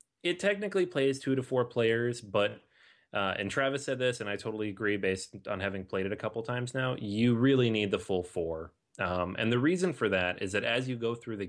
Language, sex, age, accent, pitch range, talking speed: English, male, 30-49, American, 100-130 Hz, 235 wpm